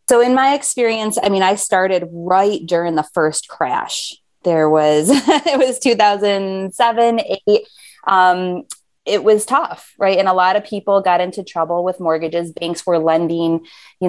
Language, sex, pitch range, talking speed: English, female, 160-195 Hz, 160 wpm